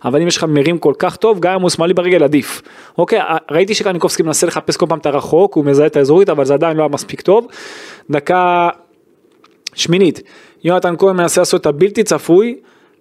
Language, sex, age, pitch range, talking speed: Hebrew, male, 20-39, 150-195 Hz, 195 wpm